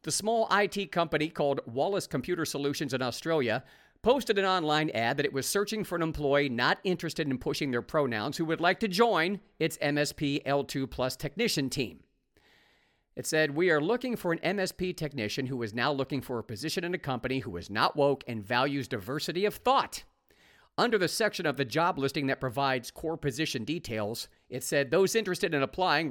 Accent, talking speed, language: American, 195 wpm, English